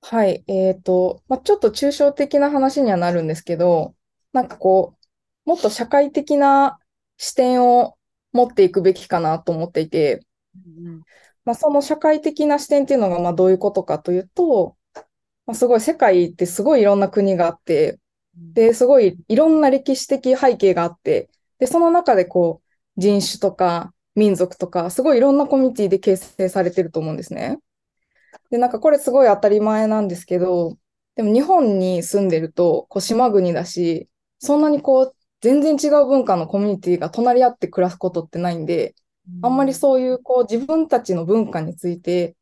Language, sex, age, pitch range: Japanese, female, 20-39, 180-265 Hz